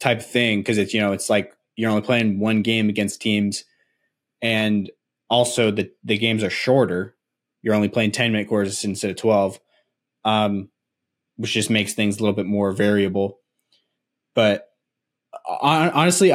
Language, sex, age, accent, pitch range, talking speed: English, male, 20-39, American, 105-120 Hz, 165 wpm